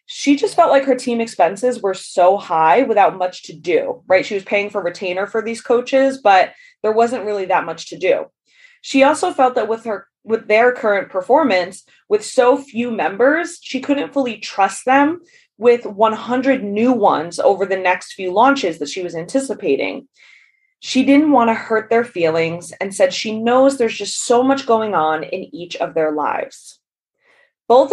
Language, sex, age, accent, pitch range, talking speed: English, female, 20-39, American, 195-275 Hz, 185 wpm